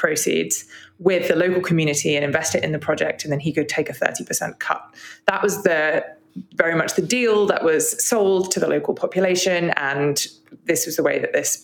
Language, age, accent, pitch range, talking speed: English, 20-39, British, 160-205 Hz, 205 wpm